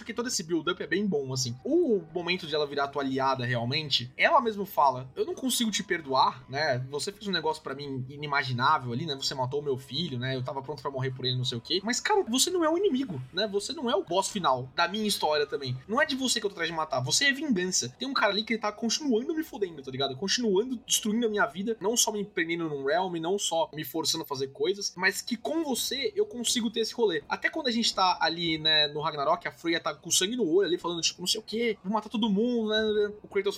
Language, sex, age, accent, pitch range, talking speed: Portuguese, male, 20-39, Brazilian, 160-230 Hz, 270 wpm